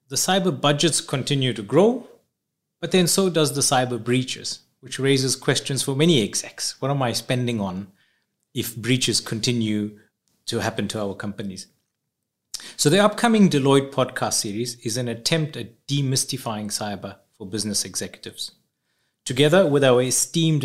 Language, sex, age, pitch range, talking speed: Finnish, male, 30-49, 115-145 Hz, 150 wpm